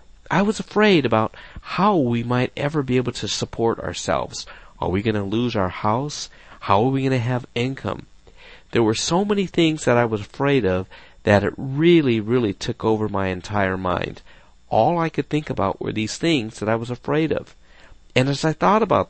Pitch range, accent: 105-140 Hz, American